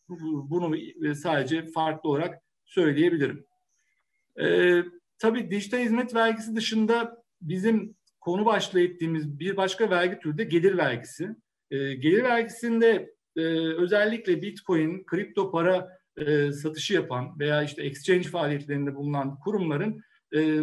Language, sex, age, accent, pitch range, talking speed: Turkish, male, 50-69, native, 155-205 Hz, 115 wpm